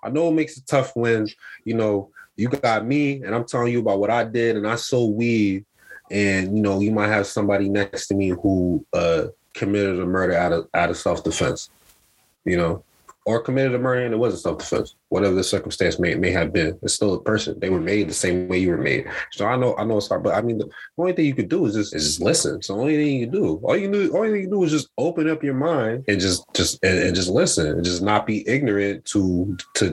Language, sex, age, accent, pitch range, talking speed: English, male, 20-39, American, 95-120 Hz, 260 wpm